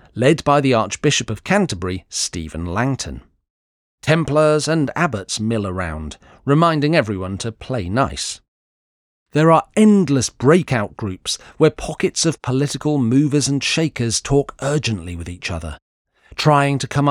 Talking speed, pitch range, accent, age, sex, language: 135 wpm, 90-145 Hz, British, 40-59, male, English